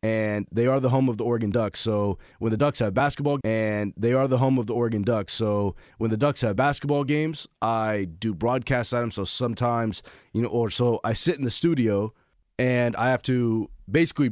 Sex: male